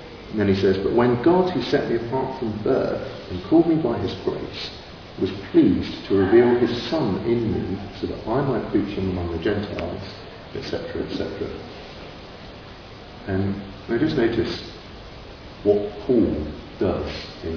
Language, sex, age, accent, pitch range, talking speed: English, male, 50-69, British, 85-105 Hz, 155 wpm